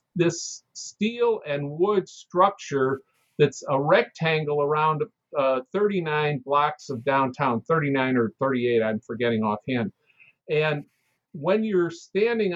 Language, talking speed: English, 115 wpm